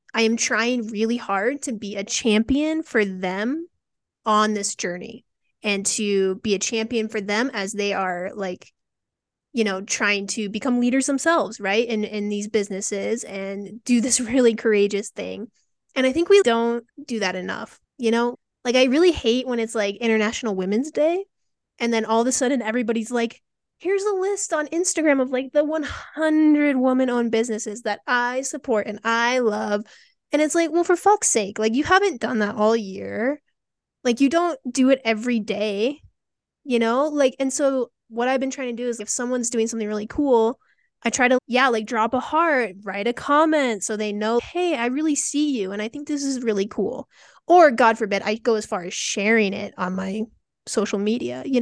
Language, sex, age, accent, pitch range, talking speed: English, female, 20-39, American, 210-270 Hz, 195 wpm